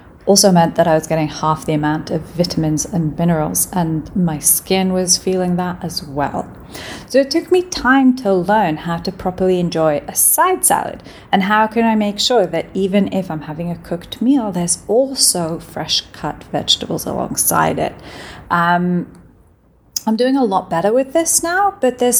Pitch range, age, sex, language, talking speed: 165-220 Hz, 30-49, female, English, 180 wpm